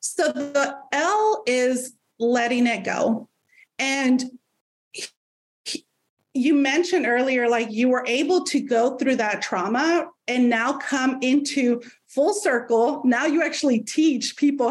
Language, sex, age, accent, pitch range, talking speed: English, female, 30-49, American, 235-285 Hz, 125 wpm